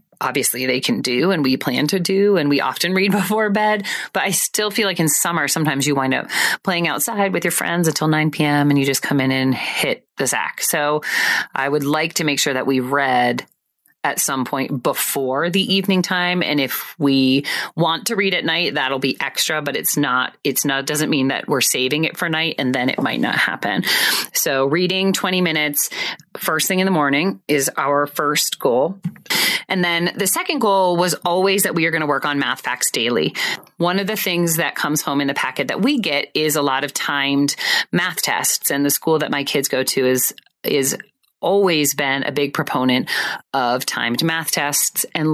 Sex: female